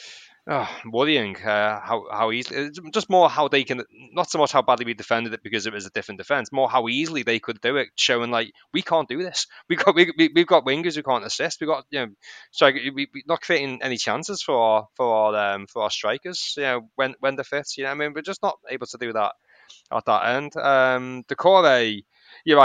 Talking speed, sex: 245 wpm, male